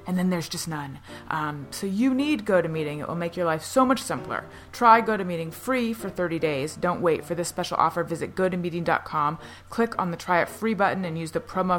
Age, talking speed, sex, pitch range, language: 20-39, 220 wpm, female, 160-215 Hz, English